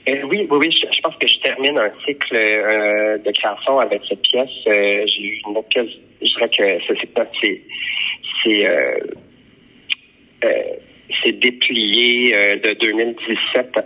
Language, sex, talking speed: French, male, 160 wpm